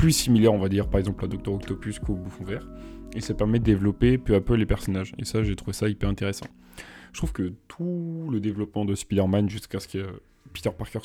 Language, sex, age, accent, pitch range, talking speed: French, male, 20-39, French, 95-115 Hz, 230 wpm